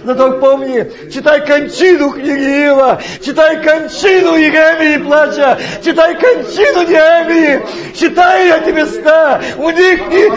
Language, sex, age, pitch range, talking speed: Russian, male, 40-59, 260-335 Hz, 110 wpm